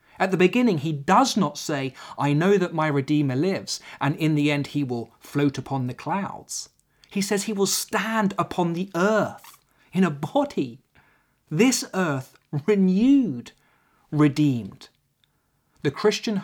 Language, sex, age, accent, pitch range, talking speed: English, male, 30-49, British, 140-195 Hz, 145 wpm